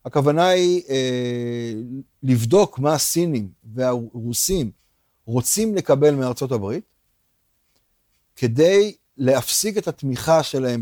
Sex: male